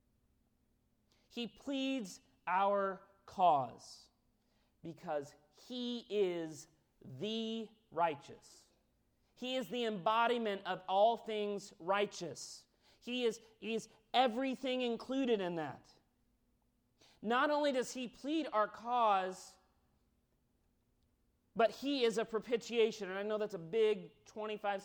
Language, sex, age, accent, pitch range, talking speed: English, male, 40-59, American, 145-220 Hz, 105 wpm